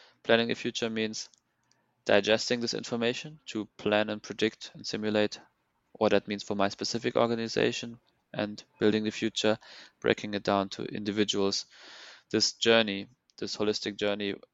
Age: 20-39